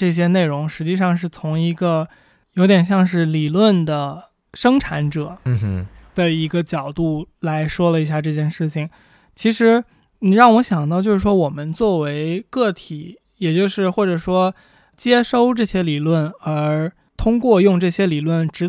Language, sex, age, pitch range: Chinese, male, 20-39, 155-195 Hz